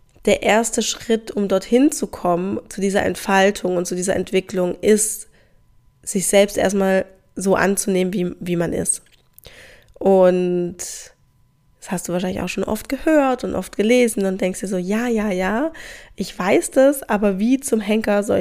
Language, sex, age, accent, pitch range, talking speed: German, female, 20-39, German, 185-210 Hz, 165 wpm